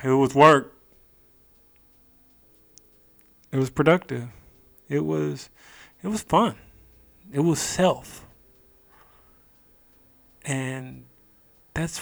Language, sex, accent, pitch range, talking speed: English, male, American, 120-190 Hz, 80 wpm